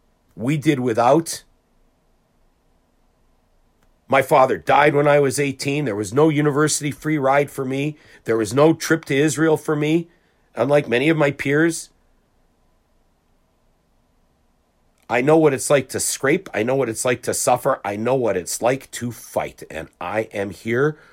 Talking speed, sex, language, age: 160 wpm, male, English, 50-69